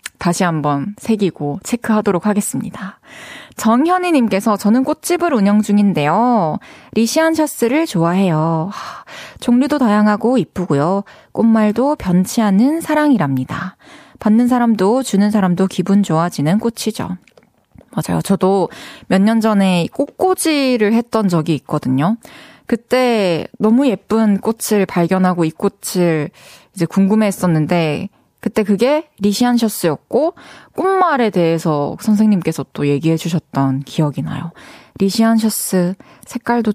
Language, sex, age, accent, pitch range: Korean, female, 20-39, native, 185-250 Hz